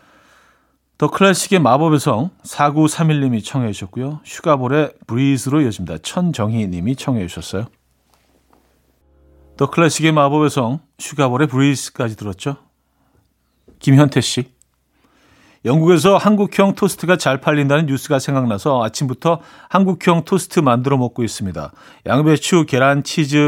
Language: Korean